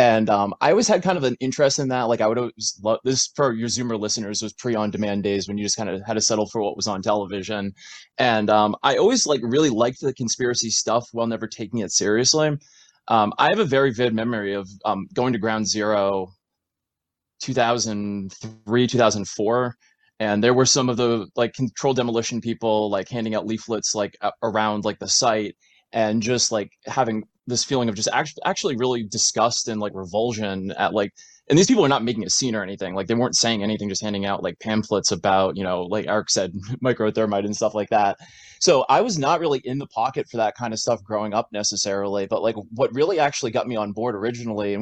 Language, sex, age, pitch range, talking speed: English, male, 20-39, 100-120 Hz, 215 wpm